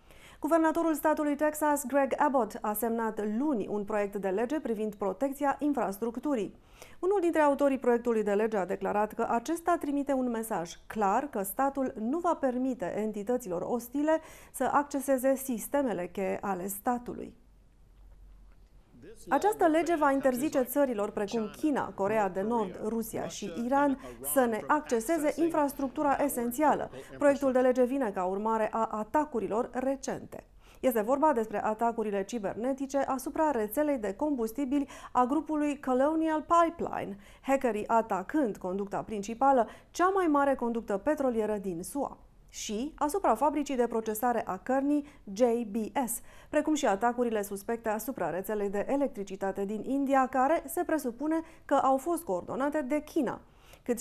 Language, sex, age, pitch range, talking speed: Romanian, female, 30-49, 215-290 Hz, 135 wpm